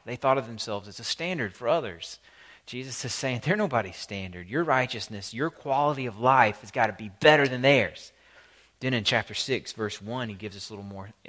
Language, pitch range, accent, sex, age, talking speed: English, 105-130 Hz, American, male, 30-49, 215 wpm